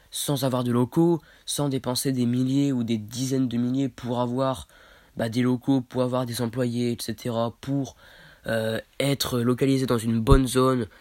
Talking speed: 170 wpm